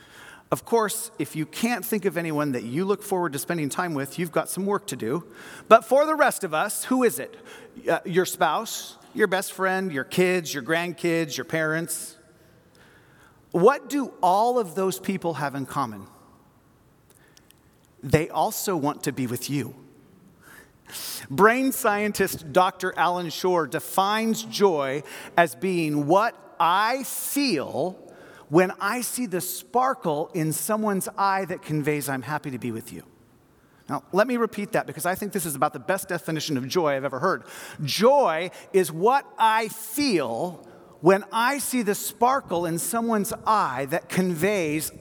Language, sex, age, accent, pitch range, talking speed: English, male, 40-59, American, 155-210 Hz, 160 wpm